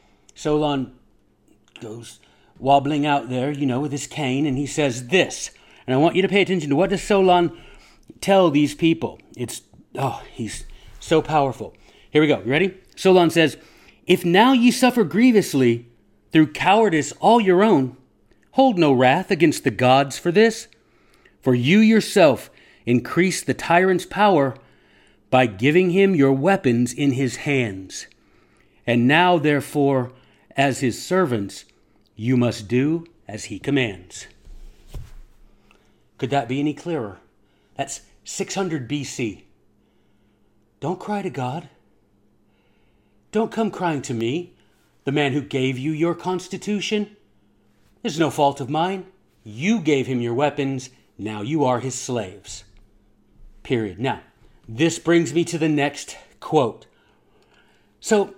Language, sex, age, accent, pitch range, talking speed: English, male, 40-59, American, 125-180 Hz, 140 wpm